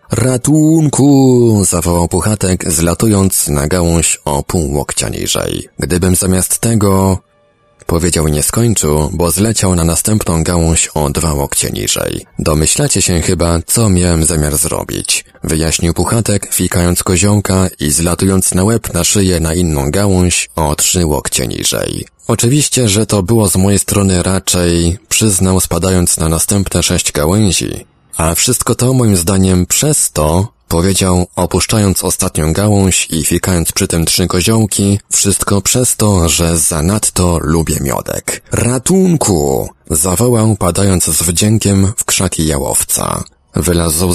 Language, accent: Polish, native